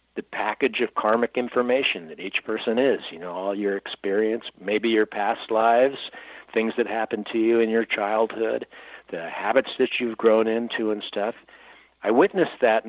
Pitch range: 100-125 Hz